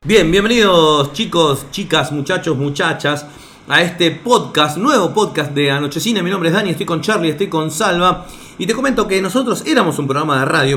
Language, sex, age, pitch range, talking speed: Spanish, male, 30-49, 140-195 Hz, 185 wpm